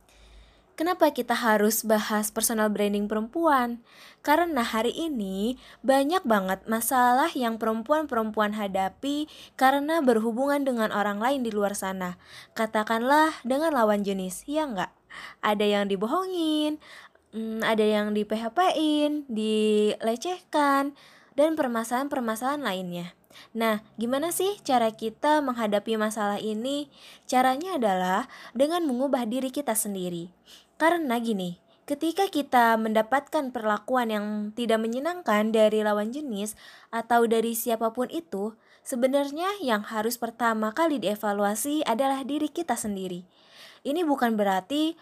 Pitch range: 215-285 Hz